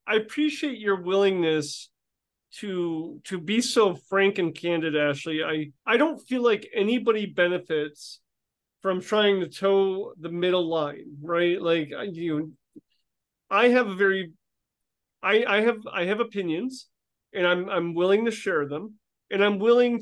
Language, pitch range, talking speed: English, 170-215 Hz, 145 wpm